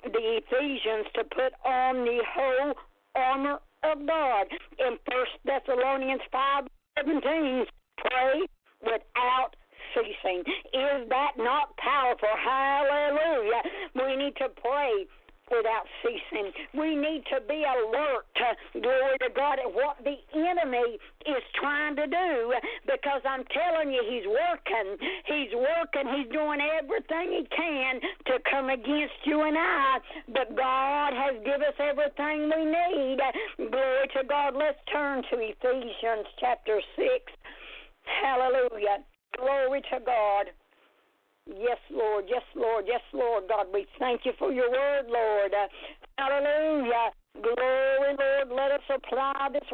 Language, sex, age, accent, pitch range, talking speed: English, female, 60-79, American, 245-300 Hz, 130 wpm